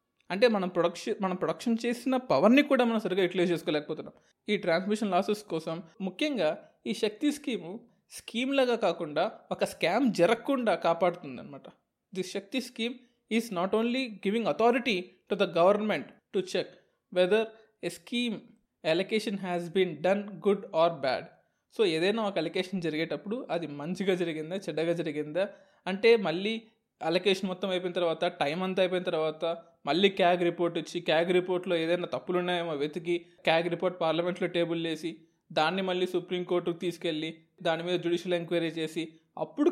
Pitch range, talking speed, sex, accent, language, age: 170-215 Hz, 140 wpm, male, native, Telugu, 20-39